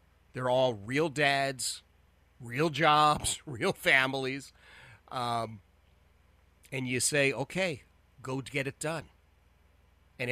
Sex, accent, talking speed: male, American, 105 wpm